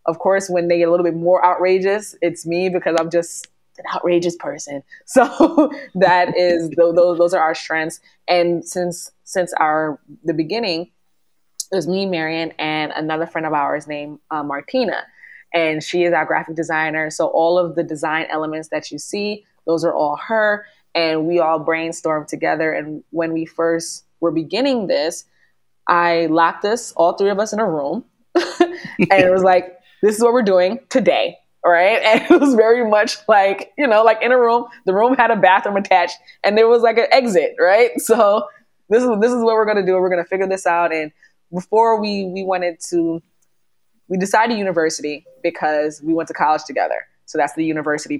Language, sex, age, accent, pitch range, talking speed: English, female, 20-39, American, 160-200 Hz, 195 wpm